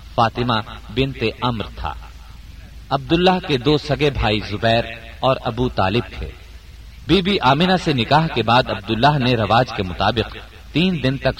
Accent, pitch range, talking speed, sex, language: Indian, 100-135 Hz, 145 wpm, male, English